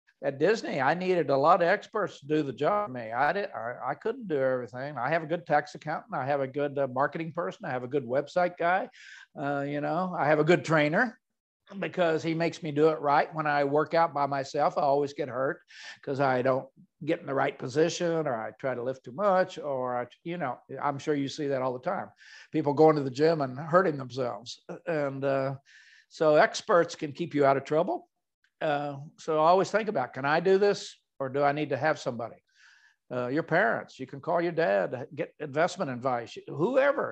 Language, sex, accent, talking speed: English, male, American, 225 wpm